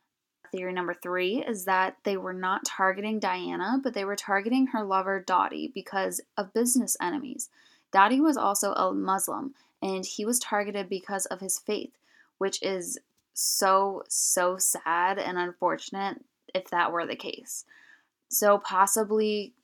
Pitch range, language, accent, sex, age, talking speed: 190-230 Hz, English, American, female, 10-29, 145 wpm